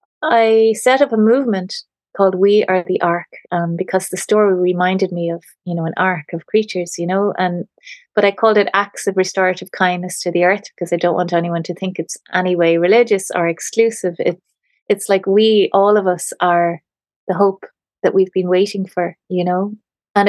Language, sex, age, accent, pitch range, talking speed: English, female, 30-49, Irish, 175-205 Hz, 200 wpm